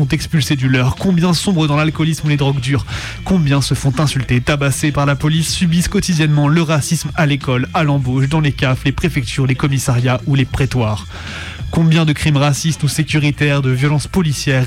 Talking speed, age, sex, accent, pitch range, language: 190 wpm, 20-39, male, French, 135-160 Hz, French